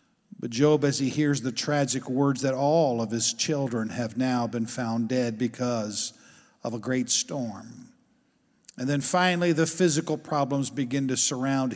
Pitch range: 120-155 Hz